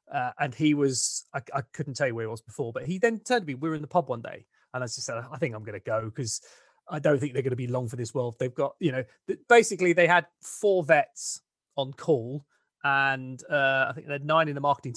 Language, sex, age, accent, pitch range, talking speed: English, male, 30-49, British, 135-175 Hz, 275 wpm